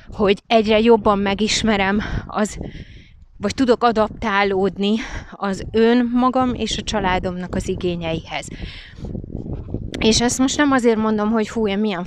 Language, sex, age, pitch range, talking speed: Hungarian, female, 30-49, 200-245 Hz, 125 wpm